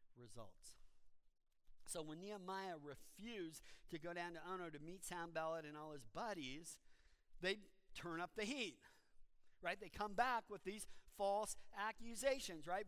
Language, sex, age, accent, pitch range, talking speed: English, male, 50-69, American, 190-235 Hz, 145 wpm